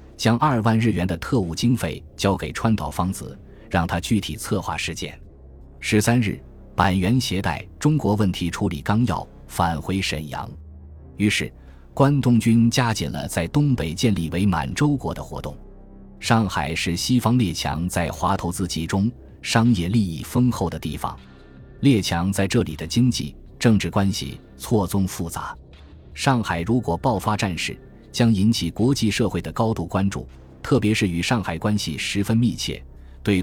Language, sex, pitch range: Chinese, male, 80-115 Hz